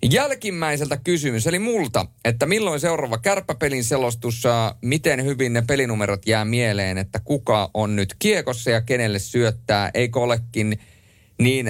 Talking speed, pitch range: 135 wpm, 95-125 Hz